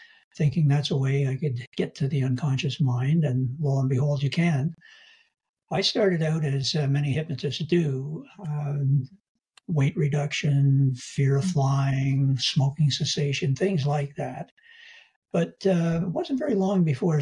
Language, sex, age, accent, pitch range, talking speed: English, male, 60-79, American, 135-170 Hz, 150 wpm